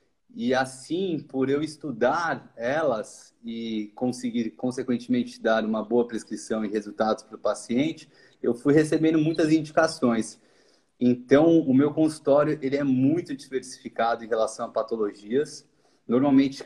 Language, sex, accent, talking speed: Portuguese, male, Brazilian, 130 wpm